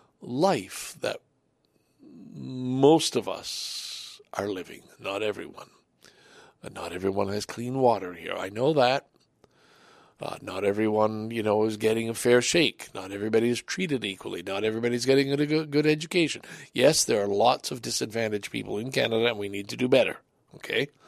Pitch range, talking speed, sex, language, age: 105-150 Hz, 160 wpm, male, English, 60-79